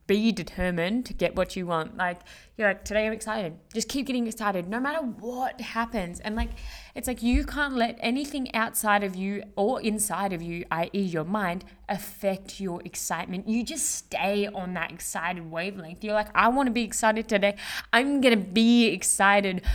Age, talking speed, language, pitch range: 20-39, 180 wpm, English, 180-230 Hz